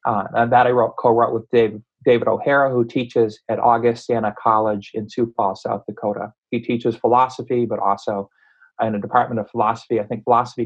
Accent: American